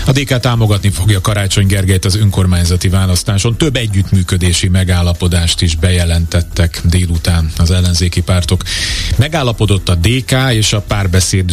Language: Hungarian